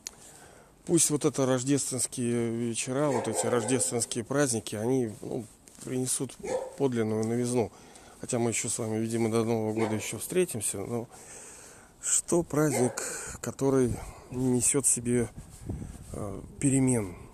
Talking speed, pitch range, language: 115 wpm, 105-125 Hz, Russian